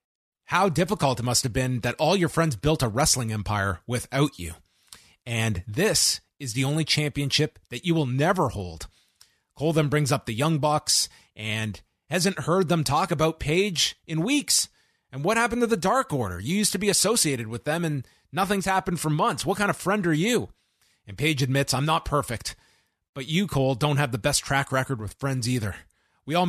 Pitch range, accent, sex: 125-170 Hz, American, male